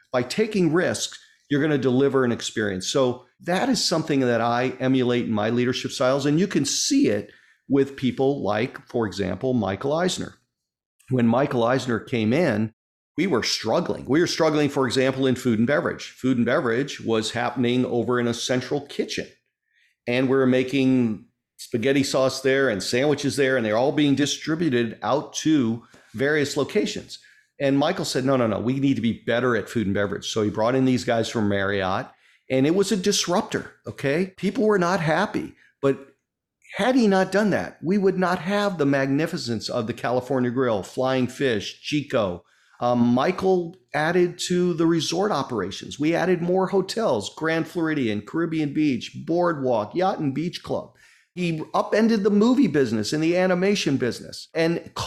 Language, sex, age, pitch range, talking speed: English, male, 50-69, 120-170 Hz, 175 wpm